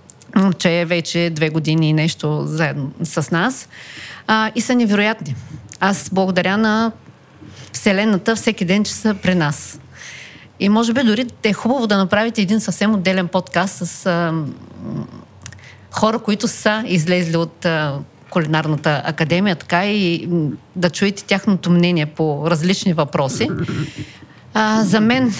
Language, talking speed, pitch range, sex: Bulgarian, 140 wpm, 160-220 Hz, female